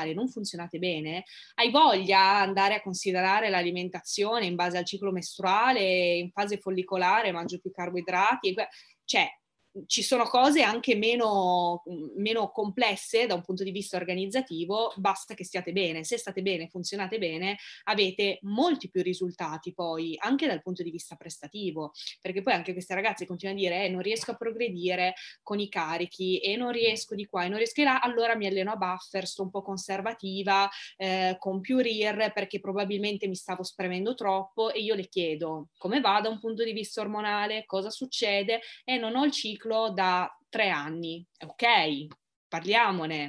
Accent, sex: native, female